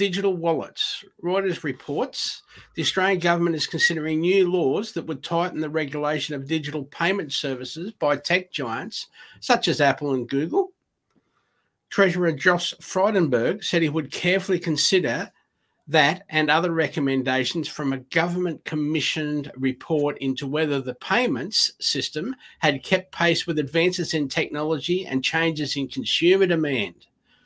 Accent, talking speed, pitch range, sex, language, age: Australian, 135 wpm, 145-180 Hz, male, English, 50-69